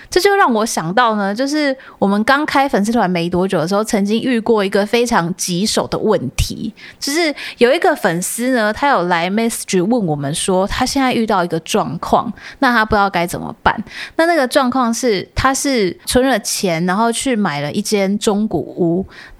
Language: Chinese